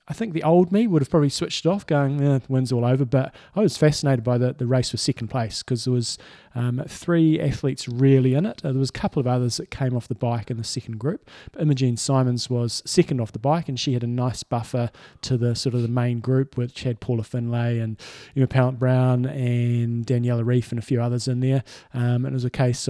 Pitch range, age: 125-150 Hz, 20-39